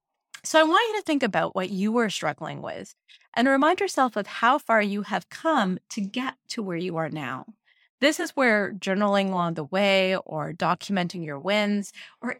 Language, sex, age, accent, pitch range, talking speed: English, female, 30-49, American, 175-245 Hz, 195 wpm